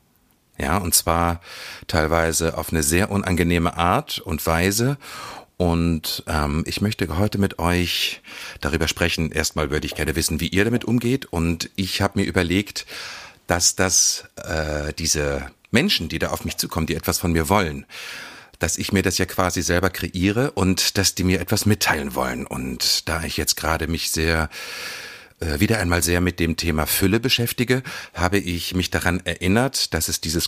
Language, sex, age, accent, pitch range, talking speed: German, male, 40-59, German, 80-100 Hz, 170 wpm